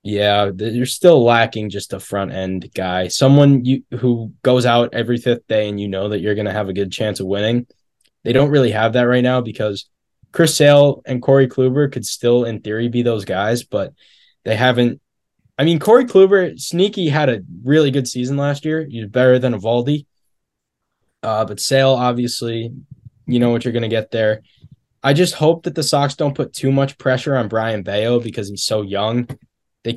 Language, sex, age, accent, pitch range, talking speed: English, male, 10-29, American, 110-135 Hz, 200 wpm